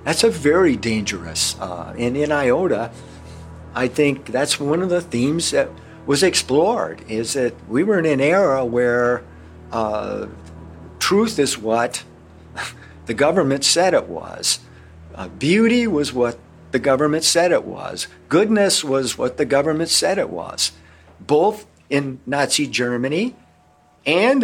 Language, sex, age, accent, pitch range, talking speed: English, male, 50-69, American, 95-165 Hz, 135 wpm